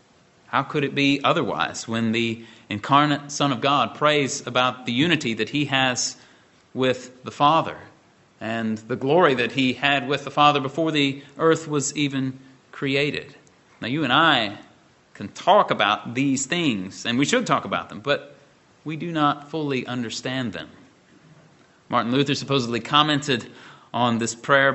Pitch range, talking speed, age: 120-155 Hz, 160 wpm, 30-49